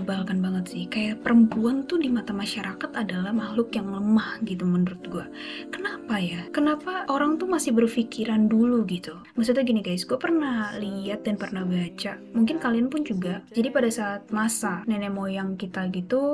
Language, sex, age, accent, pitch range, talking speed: Indonesian, female, 20-39, native, 195-240 Hz, 170 wpm